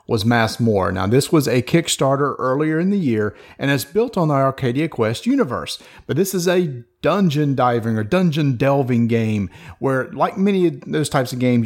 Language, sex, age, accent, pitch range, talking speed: English, male, 40-59, American, 120-155 Hz, 195 wpm